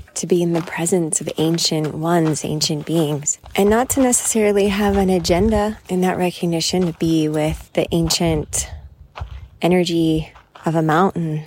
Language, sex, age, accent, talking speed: English, female, 20-39, American, 150 wpm